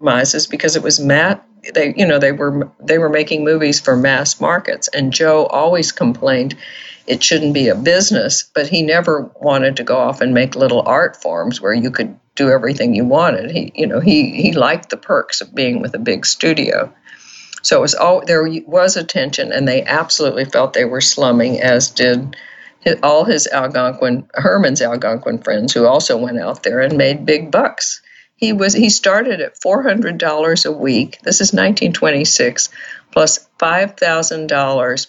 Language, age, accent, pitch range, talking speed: English, 50-69, American, 145-185 Hz, 175 wpm